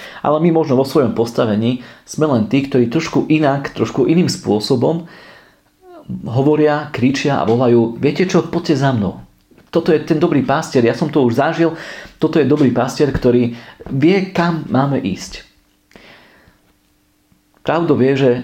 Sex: male